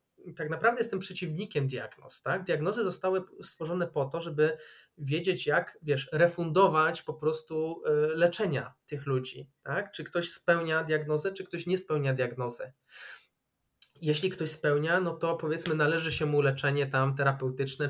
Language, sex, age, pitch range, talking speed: Polish, male, 20-39, 140-175 Hz, 145 wpm